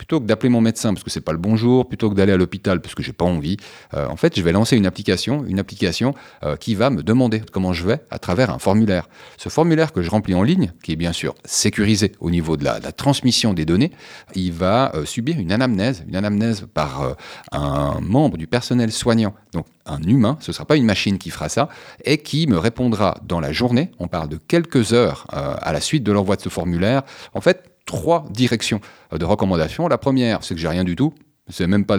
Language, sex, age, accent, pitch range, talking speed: French, male, 40-59, French, 90-130 Hz, 245 wpm